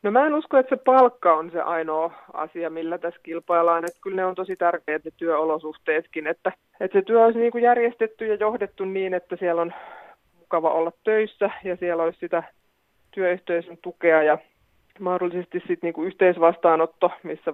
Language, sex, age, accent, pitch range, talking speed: Finnish, male, 30-49, native, 165-195 Hz, 175 wpm